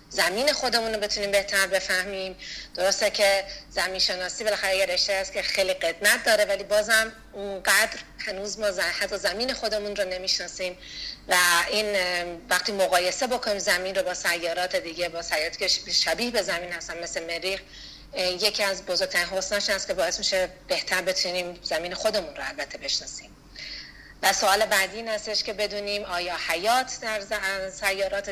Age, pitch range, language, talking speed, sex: 40-59, 180-205 Hz, Persian, 150 wpm, female